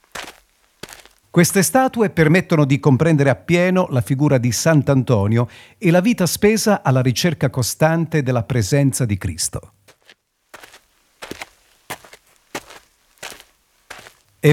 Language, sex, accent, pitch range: Italian, male, native, 125-175 Hz